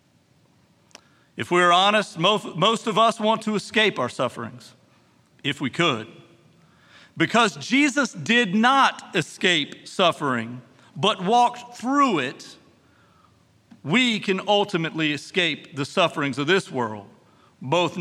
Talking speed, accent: 115 wpm, American